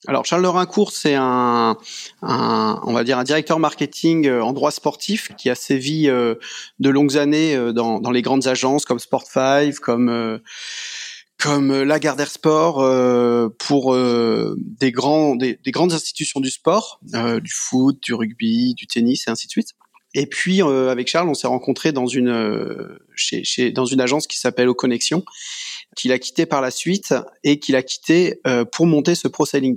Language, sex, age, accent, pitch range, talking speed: French, male, 30-49, French, 125-155 Hz, 200 wpm